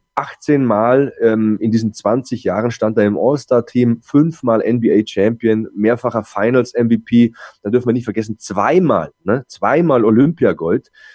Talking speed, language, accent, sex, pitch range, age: 130 wpm, German, German, male, 105-125 Hz, 20-39